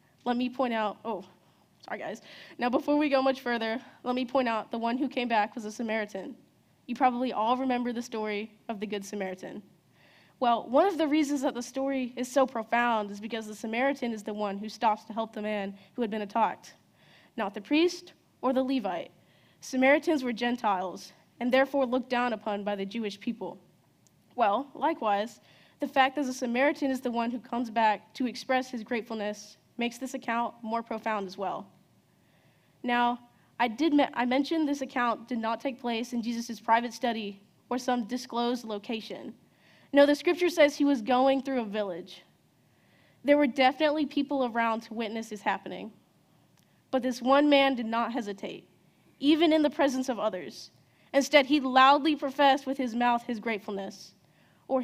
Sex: female